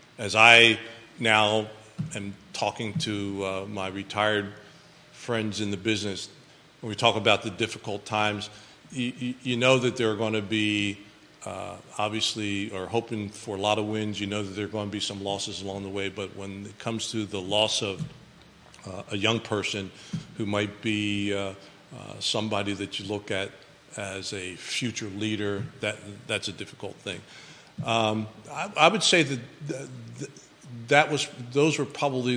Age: 50-69